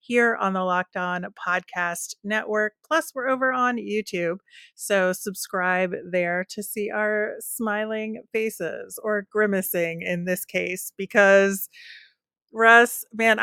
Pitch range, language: 180-225 Hz, English